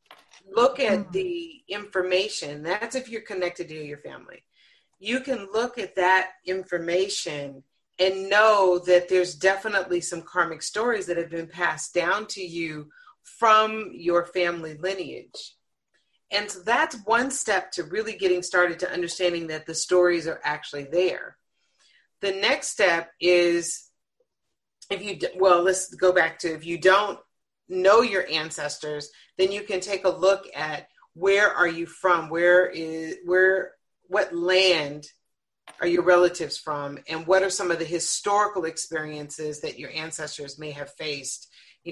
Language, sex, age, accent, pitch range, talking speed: English, female, 40-59, American, 160-190 Hz, 150 wpm